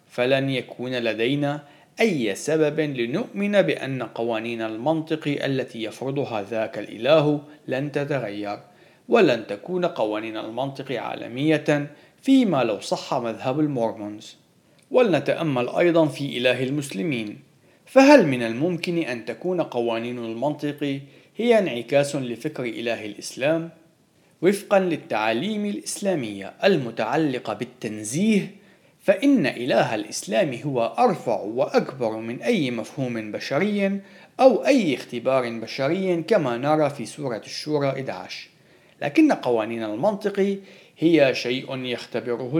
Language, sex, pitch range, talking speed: Arabic, male, 120-165 Hz, 105 wpm